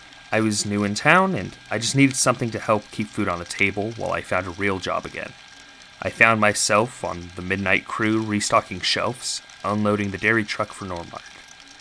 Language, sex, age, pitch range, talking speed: English, male, 30-49, 95-115 Hz, 200 wpm